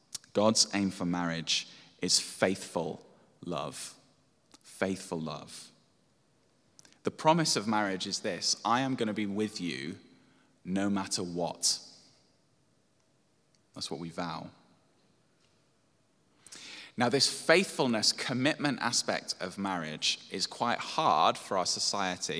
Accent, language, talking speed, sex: British, English, 115 wpm, male